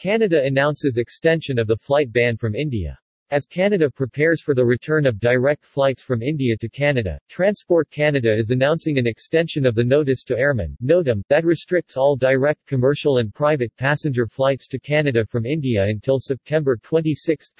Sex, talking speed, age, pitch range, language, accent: male, 170 wpm, 50-69, 120-150 Hz, English, American